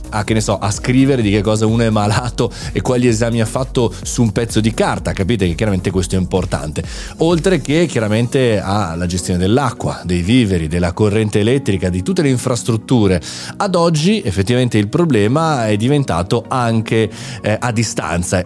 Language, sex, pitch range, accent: Italian, male, 105-130 Hz, native